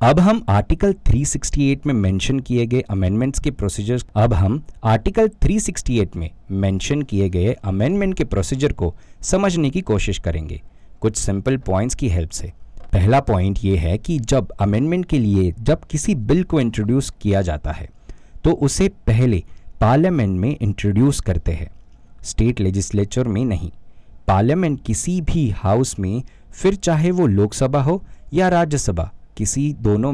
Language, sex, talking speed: Hindi, male, 150 wpm